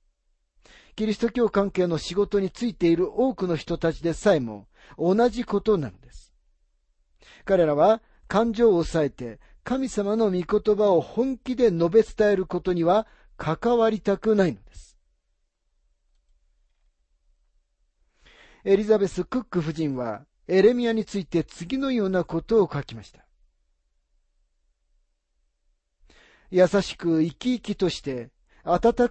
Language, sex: Japanese, male